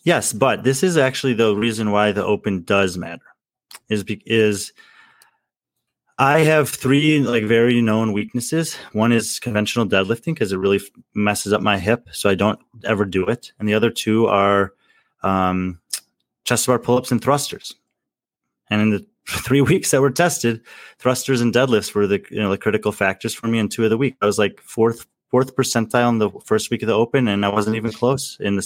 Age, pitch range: 20-39, 100-125 Hz